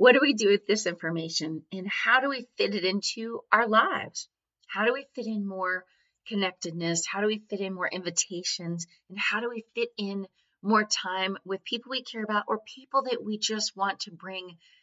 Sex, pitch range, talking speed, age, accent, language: female, 175-220 Hz, 205 wpm, 30-49, American, English